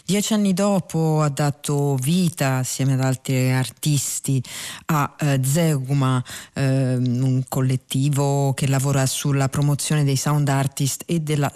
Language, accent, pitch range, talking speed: Italian, native, 135-160 Hz, 130 wpm